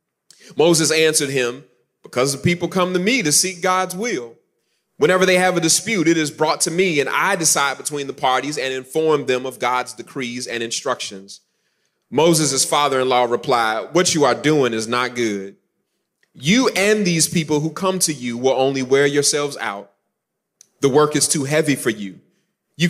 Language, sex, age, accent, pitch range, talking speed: English, male, 30-49, American, 125-180 Hz, 185 wpm